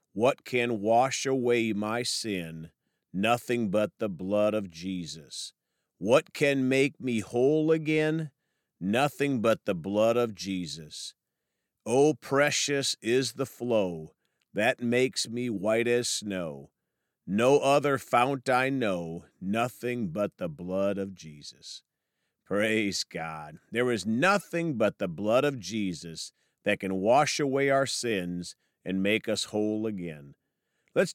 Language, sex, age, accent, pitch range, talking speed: English, male, 40-59, American, 100-145 Hz, 130 wpm